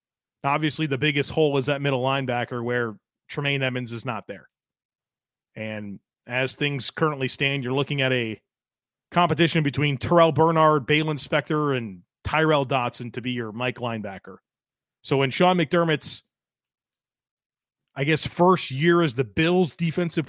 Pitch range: 135-195 Hz